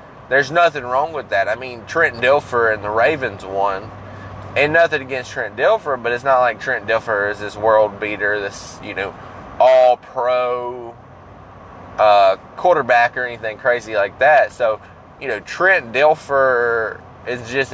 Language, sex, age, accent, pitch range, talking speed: English, male, 20-39, American, 105-130 Hz, 160 wpm